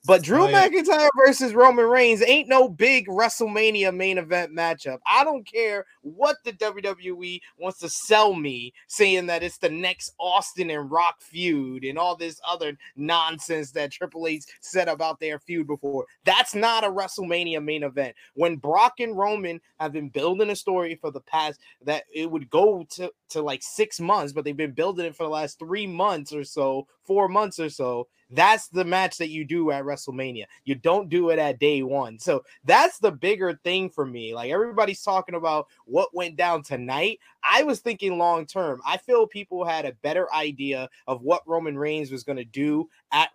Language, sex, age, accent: English, male, 20-39, American